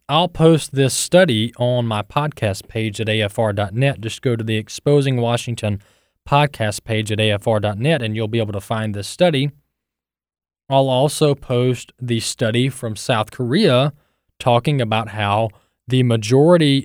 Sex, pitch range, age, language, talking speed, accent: male, 105-155 Hz, 20-39, English, 145 wpm, American